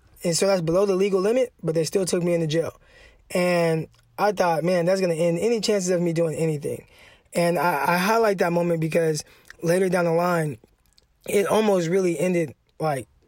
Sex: male